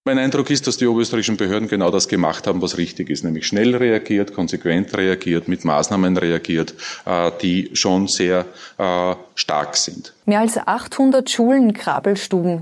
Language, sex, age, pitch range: German, female, 30-49, 150-225 Hz